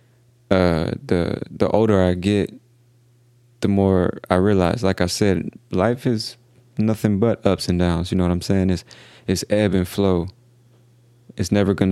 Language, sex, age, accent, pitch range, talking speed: English, male, 20-39, American, 95-120 Hz, 165 wpm